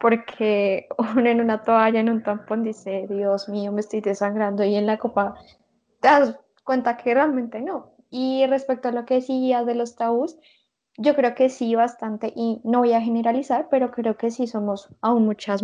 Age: 10-29